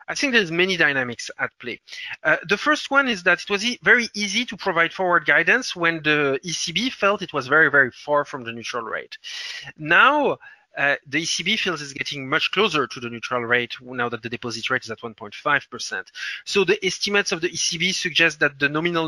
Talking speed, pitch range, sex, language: 210 wpm, 140-200 Hz, male, English